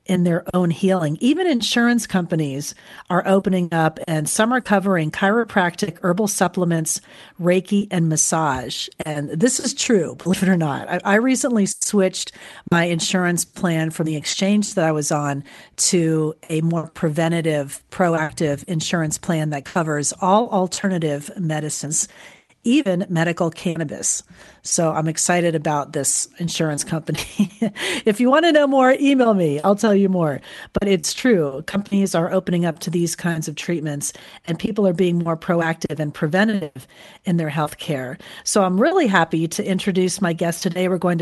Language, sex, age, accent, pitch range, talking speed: English, female, 40-59, American, 160-205 Hz, 160 wpm